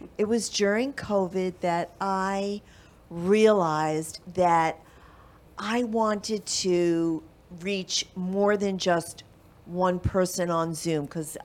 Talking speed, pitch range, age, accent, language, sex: 105 wpm, 165-200 Hz, 50-69, American, English, female